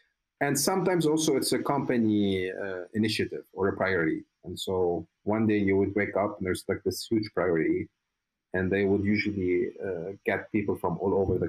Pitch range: 100-125 Hz